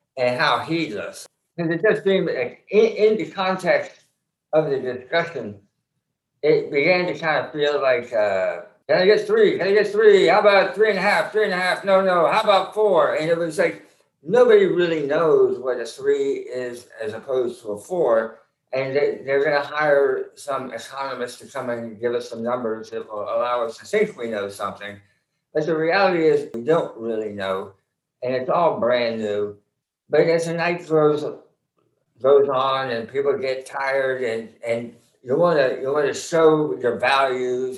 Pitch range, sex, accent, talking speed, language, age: 120-200 Hz, male, American, 185 wpm, English, 60-79